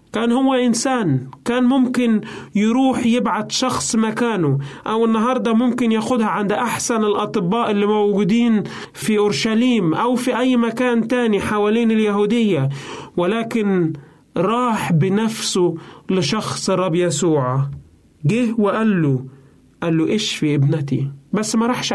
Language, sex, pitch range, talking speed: Arabic, male, 175-235 Hz, 120 wpm